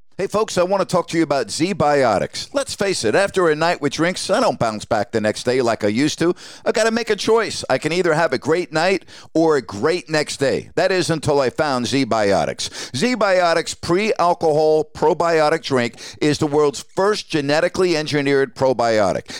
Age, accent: 50-69, American